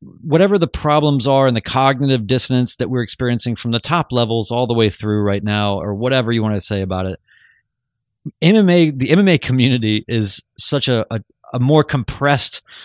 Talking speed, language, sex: 185 wpm, English, male